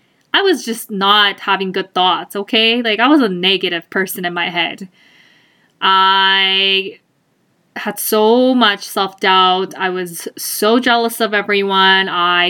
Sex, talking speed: female, 140 wpm